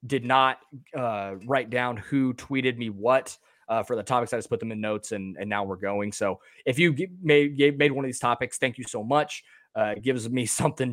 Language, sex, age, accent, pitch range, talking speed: English, male, 20-39, American, 105-135 Hz, 225 wpm